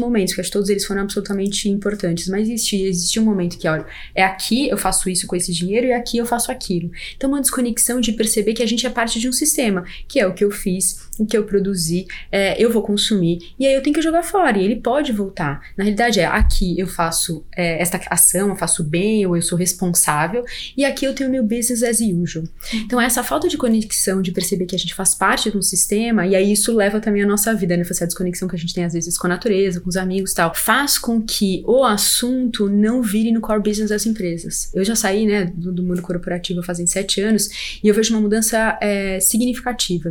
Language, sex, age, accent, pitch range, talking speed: Portuguese, female, 20-39, Brazilian, 185-230 Hz, 240 wpm